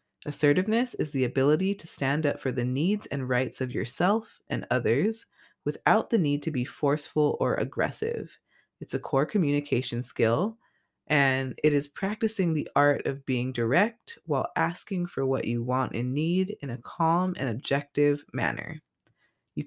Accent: American